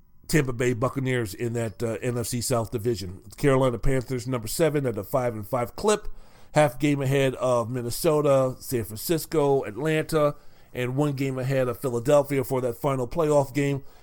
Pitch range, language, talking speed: 120-145 Hz, English, 165 wpm